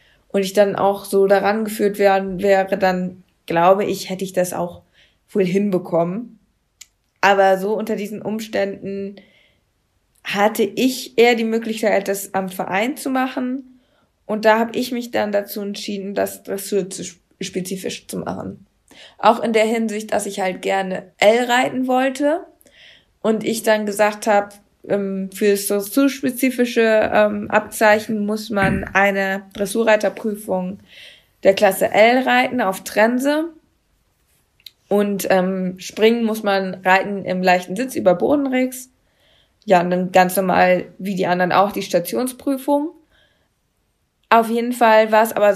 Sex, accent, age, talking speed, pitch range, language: female, German, 20-39, 140 wpm, 190-225 Hz, German